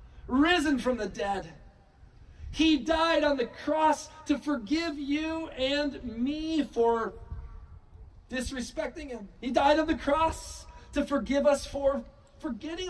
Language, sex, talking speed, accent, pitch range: English, male, 125 wpm, American, 210-290 Hz